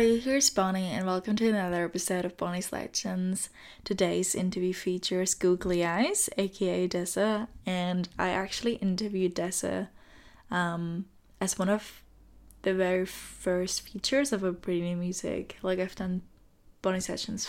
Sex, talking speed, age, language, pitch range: female, 150 wpm, 10-29, English, 180-205 Hz